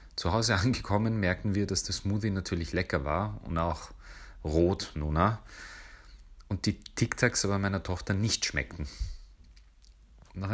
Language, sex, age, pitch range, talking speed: English, male, 40-59, 80-100 Hz, 140 wpm